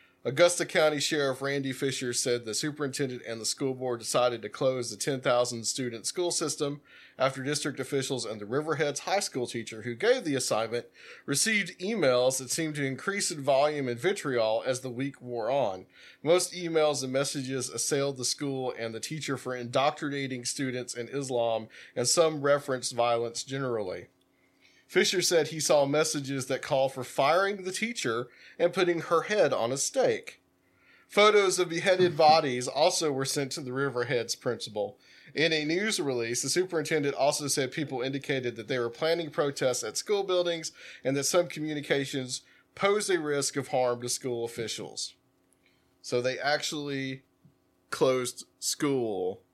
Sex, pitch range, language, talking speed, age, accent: male, 125-160 Hz, English, 160 wpm, 40-59, American